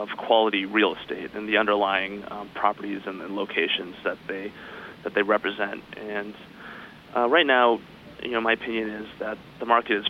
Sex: male